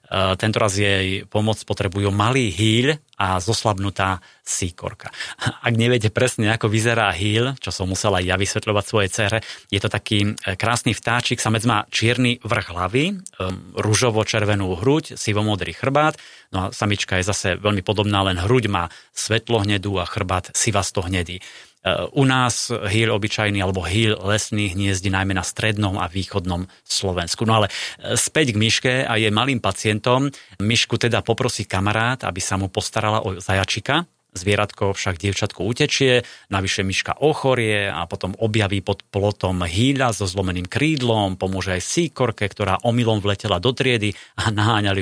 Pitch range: 95-115 Hz